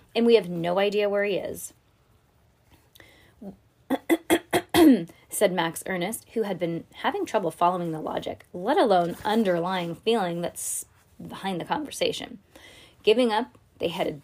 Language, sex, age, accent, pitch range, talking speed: English, female, 20-39, American, 175-220 Hz, 130 wpm